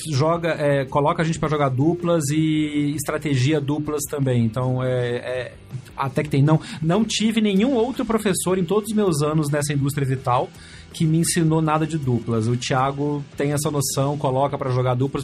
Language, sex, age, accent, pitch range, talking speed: Portuguese, male, 30-49, Brazilian, 135-165 Hz, 185 wpm